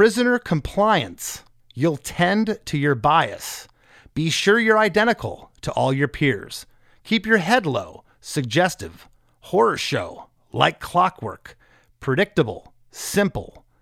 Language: English